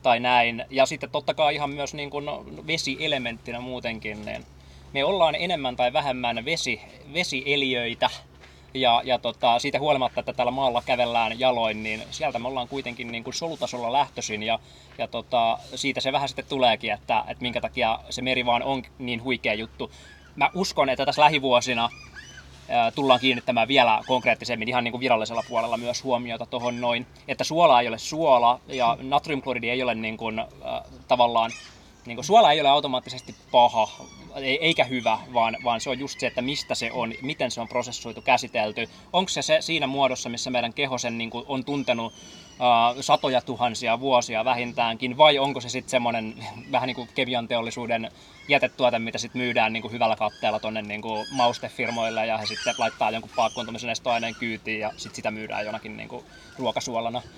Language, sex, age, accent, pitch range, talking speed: Finnish, male, 20-39, native, 115-135 Hz, 165 wpm